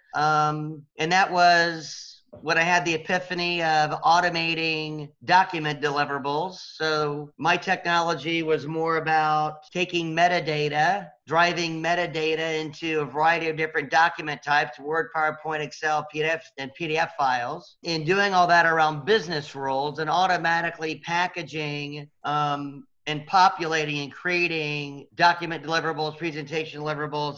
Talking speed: 125 wpm